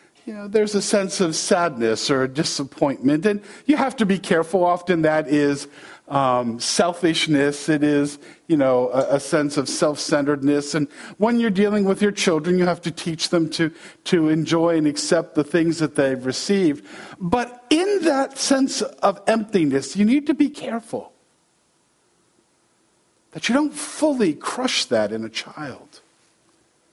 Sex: male